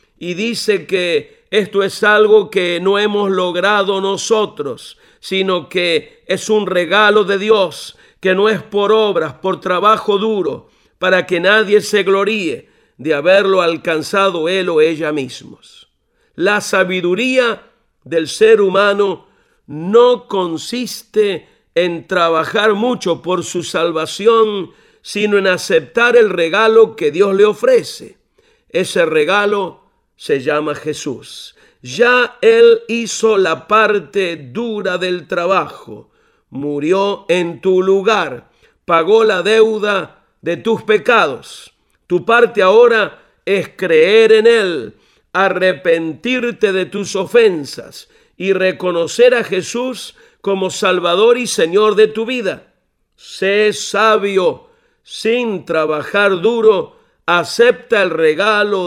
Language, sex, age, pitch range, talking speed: Spanish, male, 50-69, 185-235 Hz, 115 wpm